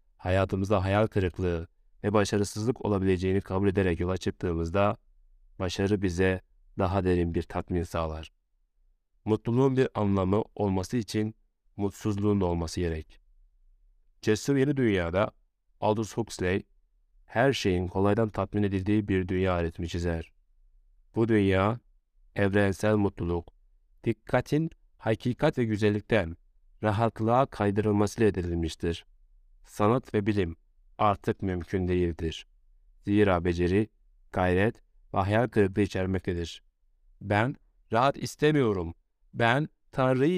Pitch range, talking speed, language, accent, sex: 85-110 Hz, 100 wpm, Turkish, native, male